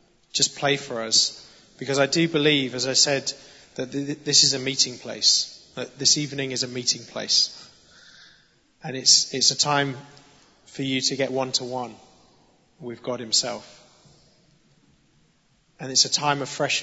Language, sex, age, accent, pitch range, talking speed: English, male, 30-49, British, 125-140 Hz, 165 wpm